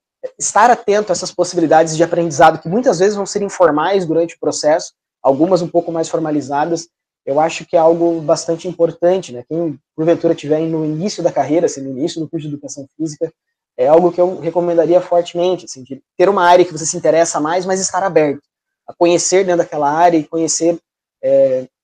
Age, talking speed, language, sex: 20-39, 195 wpm, Portuguese, male